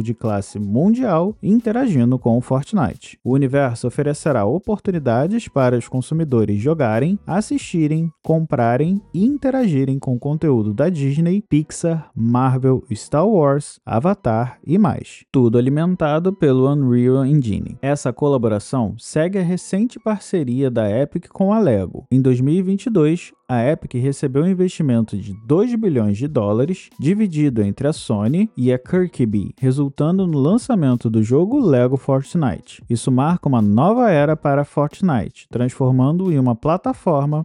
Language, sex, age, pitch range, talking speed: Portuguese, male, 20-39, 125-180 Hz, 135 wpm